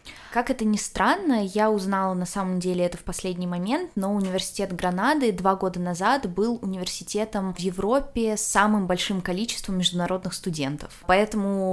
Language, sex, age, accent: Russian, female, 20-39, native